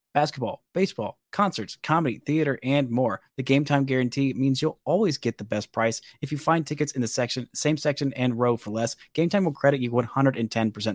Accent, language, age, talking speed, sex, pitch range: American, English, 30-49, 205 wpm, male, 110-140 Hz